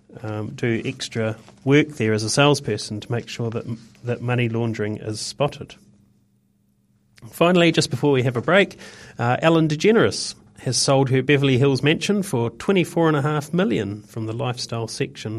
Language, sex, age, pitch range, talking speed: English, male, 40-59, 115-150 Hz, 160 wpm